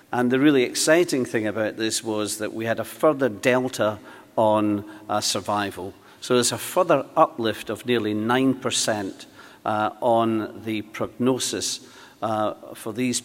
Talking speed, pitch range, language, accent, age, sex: 145 wpm, 110-140 Hz, English, British, 50-69, male